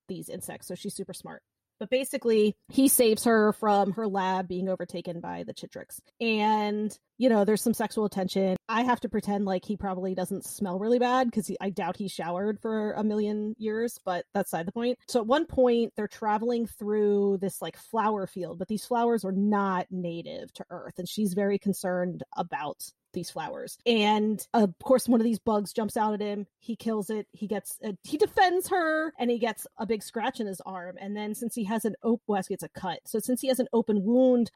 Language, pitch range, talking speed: English, 195-235 Hz, 210 wpm